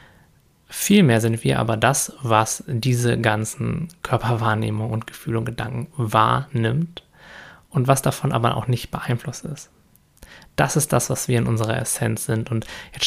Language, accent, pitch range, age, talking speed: German, German, 115-140 Hz, 20-39, 150 wpm